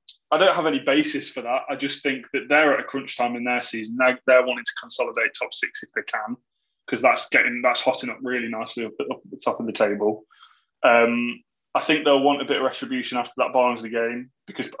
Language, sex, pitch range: English, male, 120-150 Hz